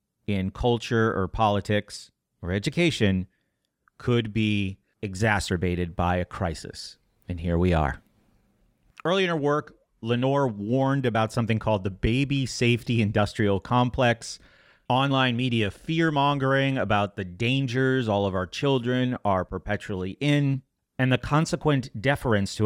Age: 30-49